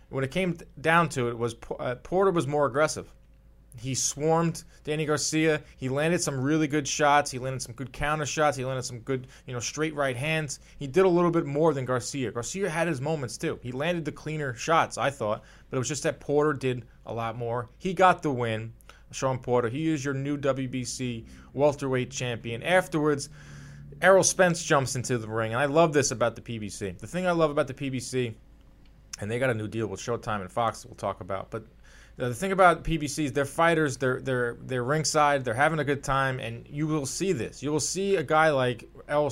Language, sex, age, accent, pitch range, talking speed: English, male, 20-39, American, 125-155 Hz, 220 wpm